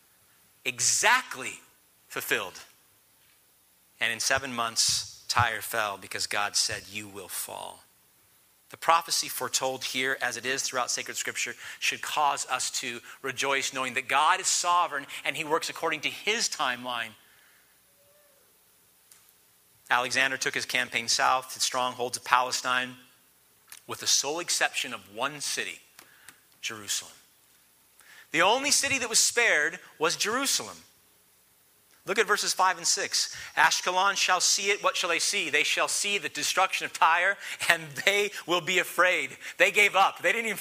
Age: 40-59